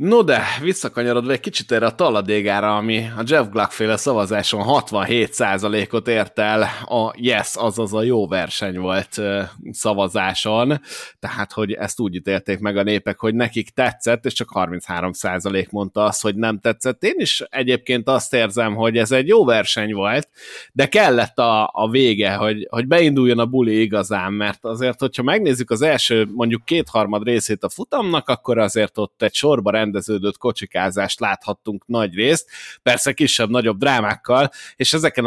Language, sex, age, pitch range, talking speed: Hungarian, male, 20-39, 105-125 Hz, 155 wpm